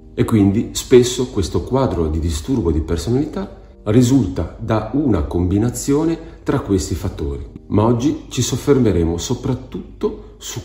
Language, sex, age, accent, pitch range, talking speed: Italian, male, 40-59, native, 85-110 Hz, 125 wpm